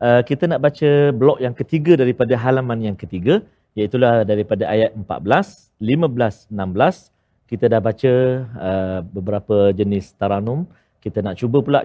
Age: 40-59